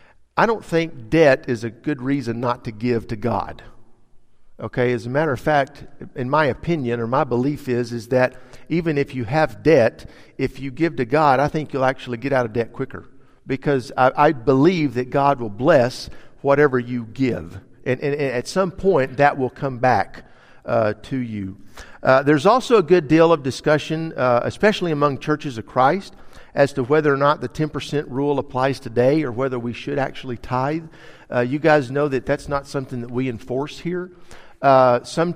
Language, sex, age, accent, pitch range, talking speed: English, male, 50-69, American, 125-155 Hz, 195 wpm